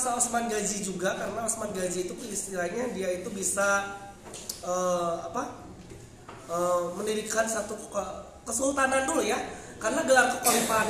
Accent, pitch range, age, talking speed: native, 190-230 Hz, 20-39, 130 wpm